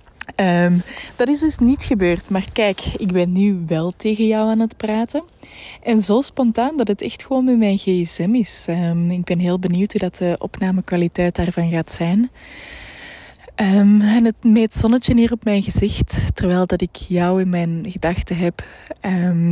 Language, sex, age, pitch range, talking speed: Dutch, female, 20-39, 175-215 Hz, 180 wpm